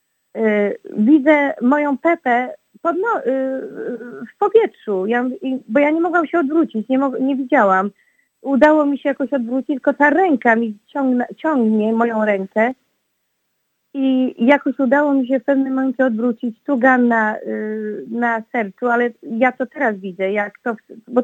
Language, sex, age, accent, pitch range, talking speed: Polish, female, 30-49, native, 220-270 Hz, 165 wpm